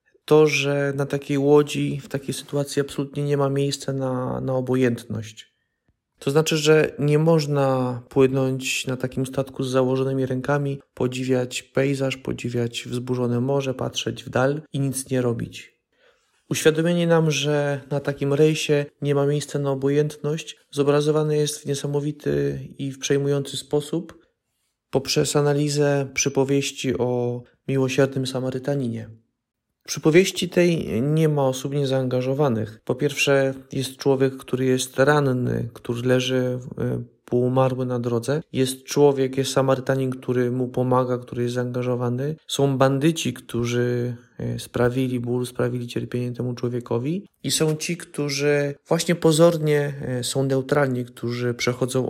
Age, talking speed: 20-39, 130 wpm